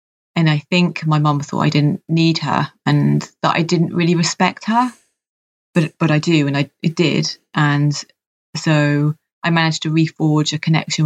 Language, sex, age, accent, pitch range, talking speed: English, female, 30-49, British, 155-180 Hz, 180 wpm